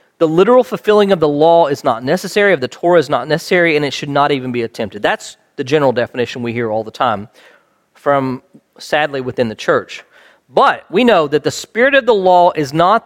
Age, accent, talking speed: 40-59, American, 215 wpm